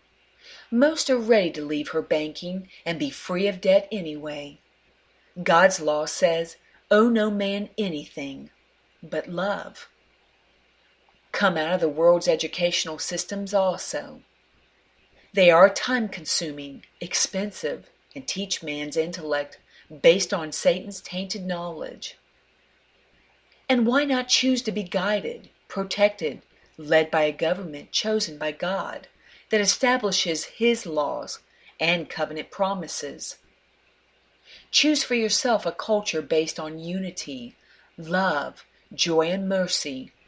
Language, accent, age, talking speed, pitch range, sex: English, American, 40-59, 115 wpm, 160-210 Hz, female